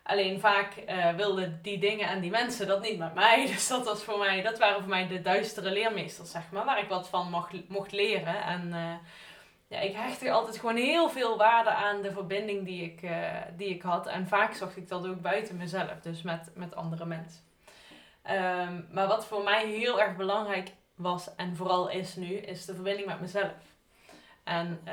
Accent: Dutch